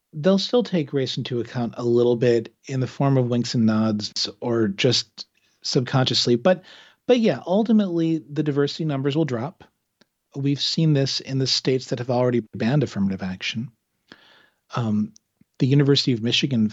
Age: 40-59